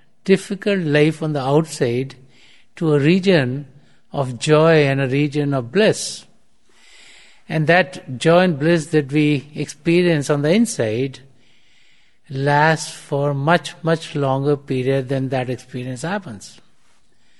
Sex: male